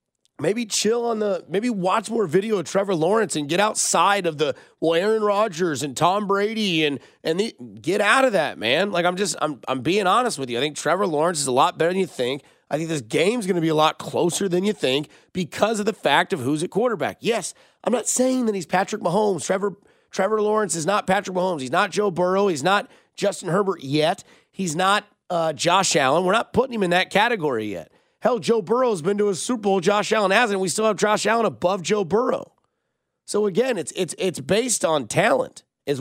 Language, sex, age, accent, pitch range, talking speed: English, male, 30-49, American, 155-210 Hz, 230 wpm